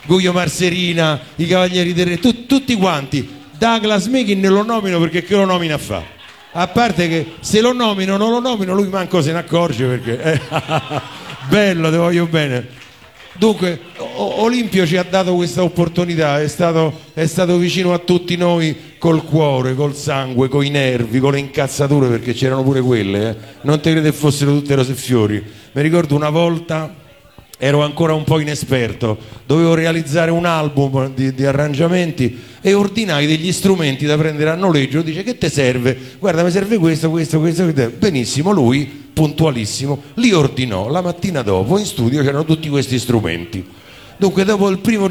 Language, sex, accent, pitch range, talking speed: Italian, male, native, 135-180 Hz, 170 wpm